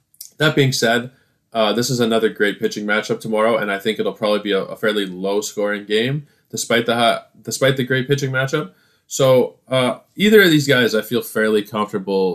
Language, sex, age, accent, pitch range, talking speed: English, male, 20-39, American, 105-135 Hz, 195 wpm